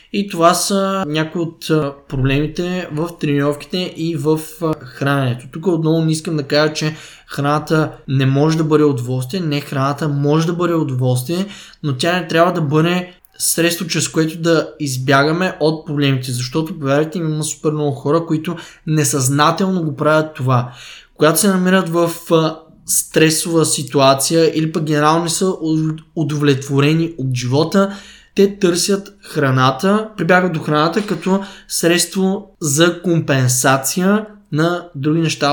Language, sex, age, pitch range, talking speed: Bulgarian, male, 20-39, 140-175 Hz, 135 wpm